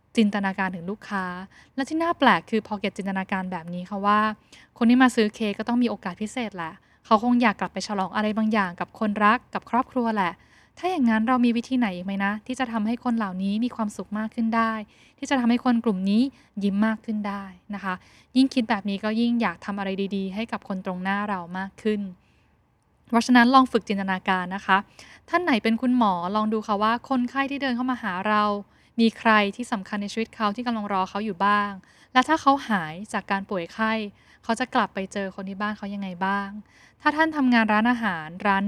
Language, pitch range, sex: Thai, 200-245 Hz, female